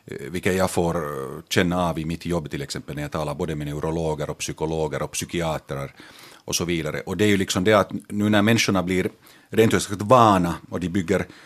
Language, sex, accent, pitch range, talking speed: Finnish, male, native, 80-105 Hz, 210 wpm